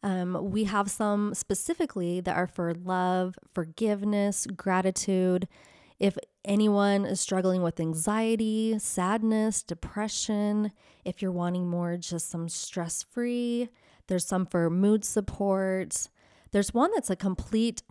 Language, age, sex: English, 20-39, female